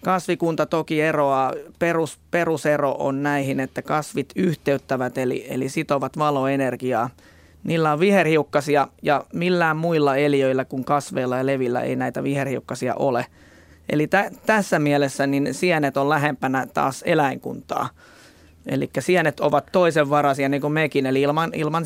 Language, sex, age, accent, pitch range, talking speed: Finnish, male, 20-39, native, 135-160 Hz, 135 wpm